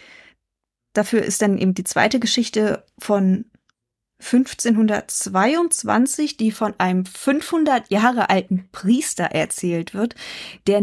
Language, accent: German, German